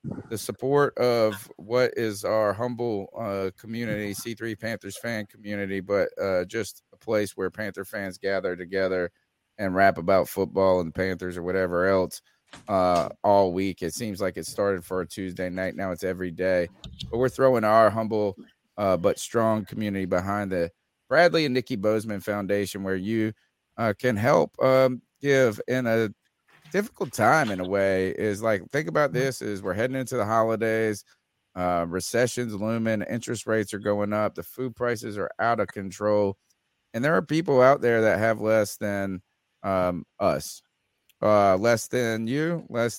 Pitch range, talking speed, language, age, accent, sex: 100-125 Hz, 170 wpm, English, 30-49, American, male